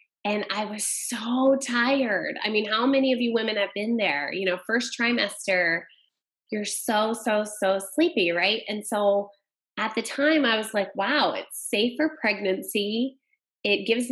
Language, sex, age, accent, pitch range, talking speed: English, female, 20-39, American, 200-250 Hz, 165 wpm